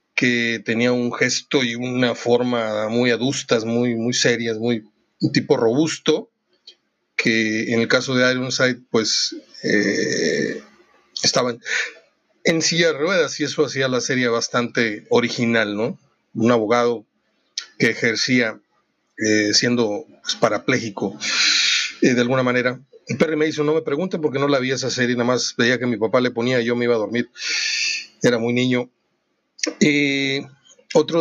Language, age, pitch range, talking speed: Spanish, 40-59, 120-145 Hz, 155 wpm